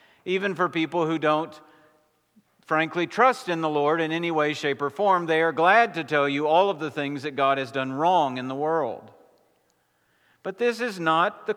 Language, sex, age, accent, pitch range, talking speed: English, male, 50-69, American, 155-195 Hz, 200 wpm